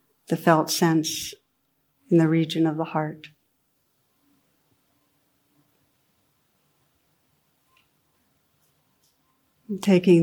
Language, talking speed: English, 65 wpm